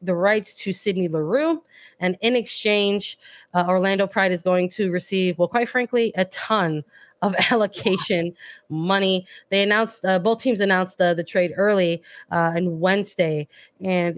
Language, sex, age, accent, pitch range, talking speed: English, female, 20-39, American, 175-215 Hz, 155 wpm